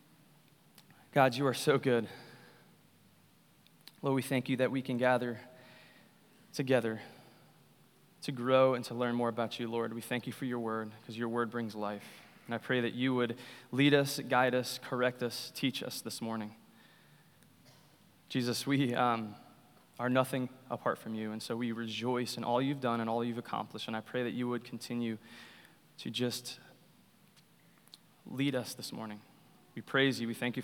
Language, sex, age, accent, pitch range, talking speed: English, male, 20-39, American, 120-145 Hz, 175 wpm